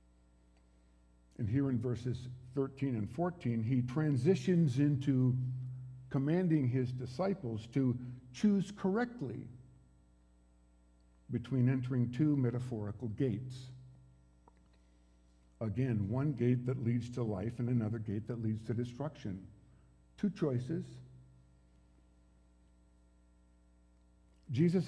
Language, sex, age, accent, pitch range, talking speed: English, male, 50-69, American, 105-140 Hz, 90 wpm